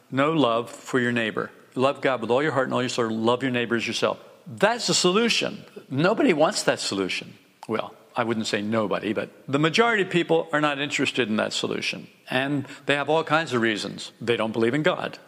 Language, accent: English, American